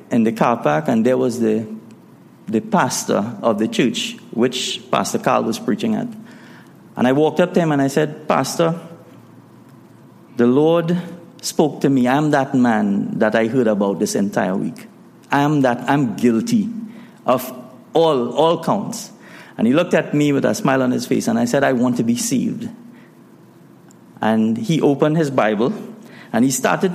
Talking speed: 175 wpm